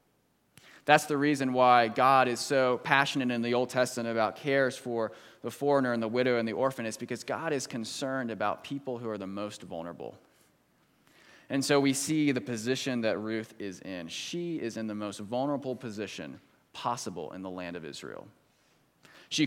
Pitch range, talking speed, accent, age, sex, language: 115-145 Hz, 180 wpm, American, 20-39, male, English